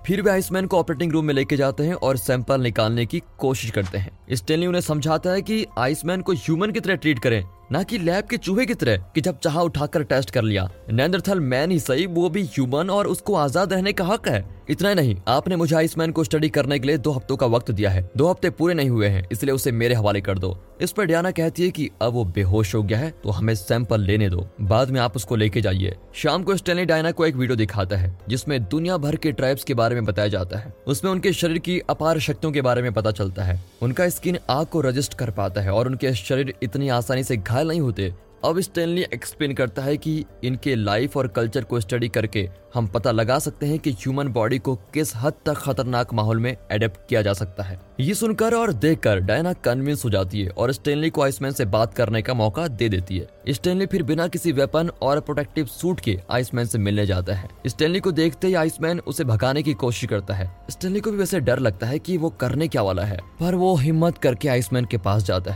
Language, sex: Hindi, male